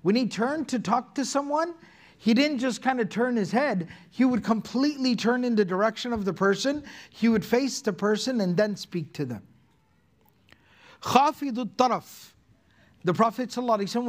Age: 50-69